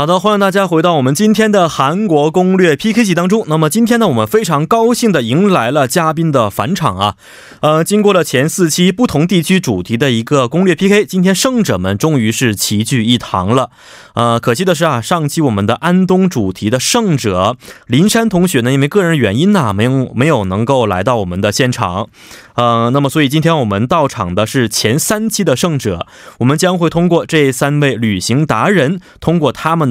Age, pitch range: 20-39, 120-180 Hz